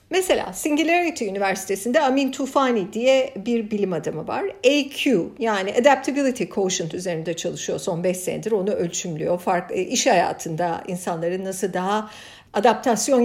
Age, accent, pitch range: 50-69, native, 210-310 Hz